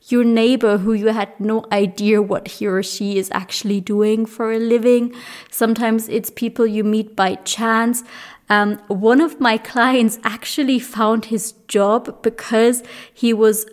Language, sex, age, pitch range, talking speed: English, female, 20-39, 215-255 Hz, 155 wpm